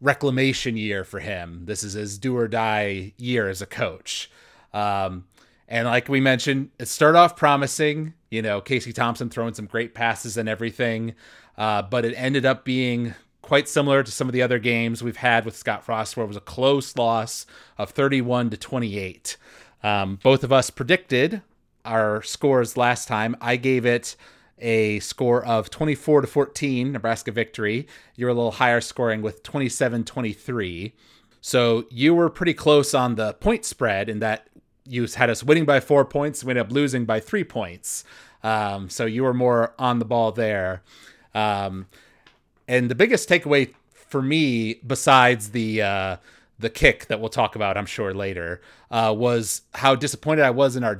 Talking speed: 180 wpm